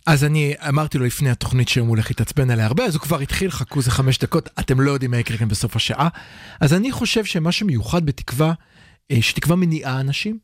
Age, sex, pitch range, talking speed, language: 40-59, male, 130-195 Hz, 215 wpm, Hebrew